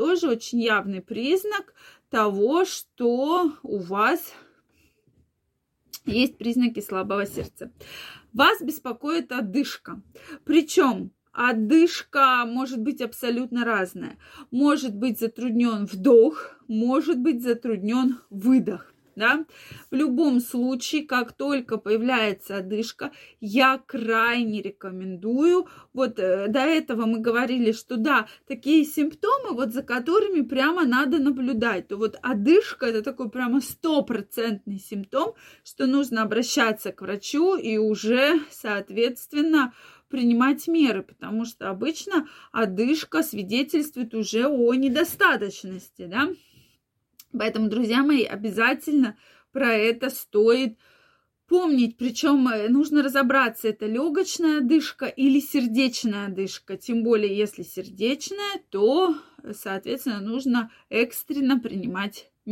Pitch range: 220-290 Hz